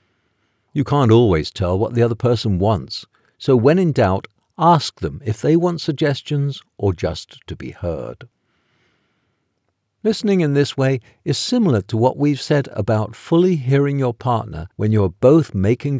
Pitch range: 95-140 Hz